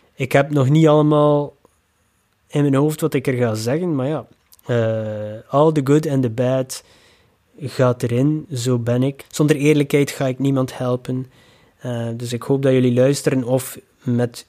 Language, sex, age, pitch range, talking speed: Dutch, male, 20-39, 120-150 Hz, 175 wpm